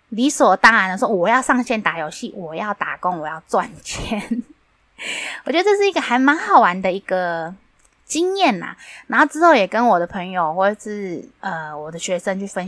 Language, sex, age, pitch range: Chinese, female, 20-39, 175-265 Hz